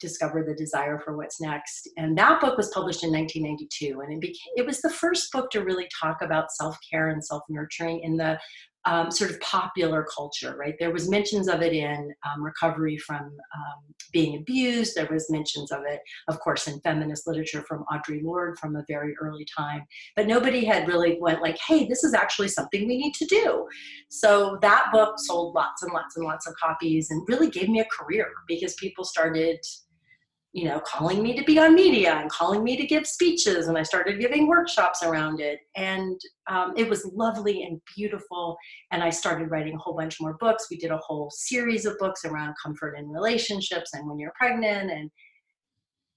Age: 40-59